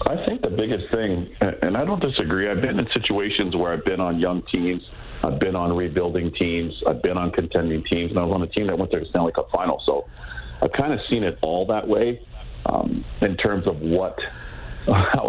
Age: 50-69